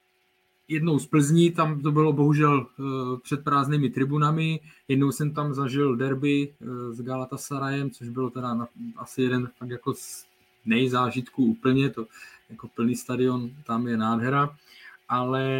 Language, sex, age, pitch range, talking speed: Czech, male, 20-39, 120-145 Hz, 135 wpm